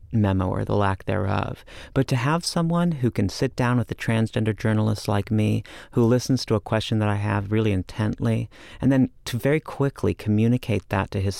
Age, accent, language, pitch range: 40-59, American, English, 105-130 Hz